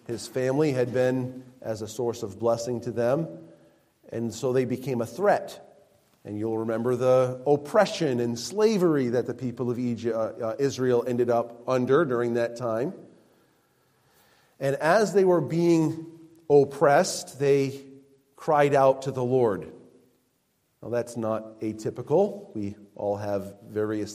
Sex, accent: male, American